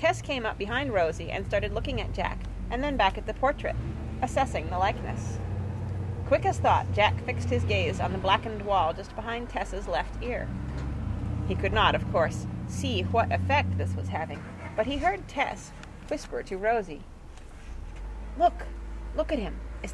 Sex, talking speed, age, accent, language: female, 175 wpm, 30-49, American, English